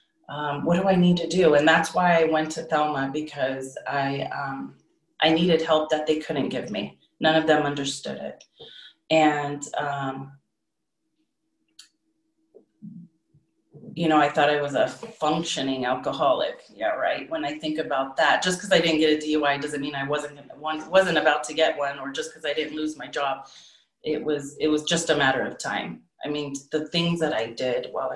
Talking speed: 190 wpm